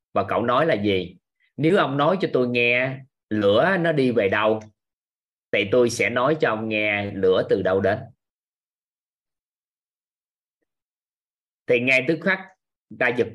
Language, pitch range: Vietnamese, 100-145 Hz